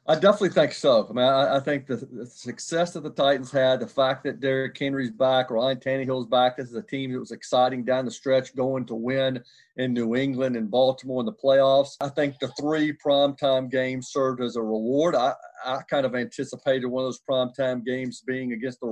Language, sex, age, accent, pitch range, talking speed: English, male, 40-59, American, 125-140 Hz, 215 wpm